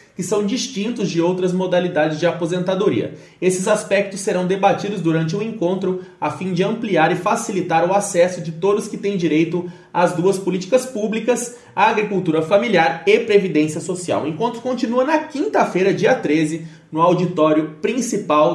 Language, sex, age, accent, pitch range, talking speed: Portuguese, male, 30-49, Brazilian, 165-205 Hz, 155 wpm